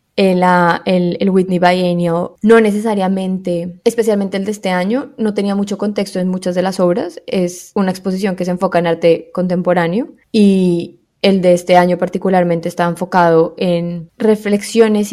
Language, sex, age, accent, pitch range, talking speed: Spanish, female, 10-29, Colombian, 175-205 Hz, 160 wpm